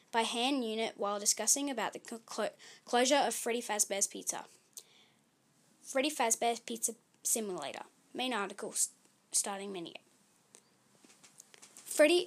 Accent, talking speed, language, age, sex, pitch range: Australian, 110 wpm, English, 10-29, female, 220-270 Hz